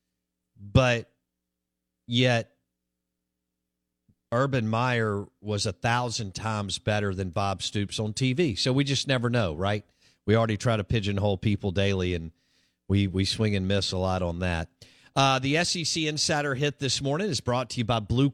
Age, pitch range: 50-69, 90-130 Hz